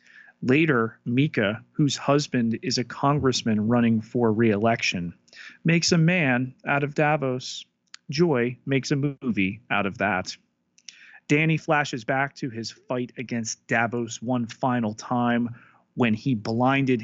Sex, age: male, 30-49